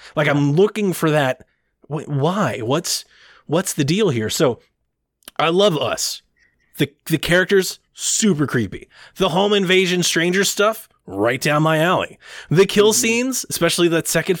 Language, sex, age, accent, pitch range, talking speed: English, male, 30-49, American, 140-200 Hz, 145 wpm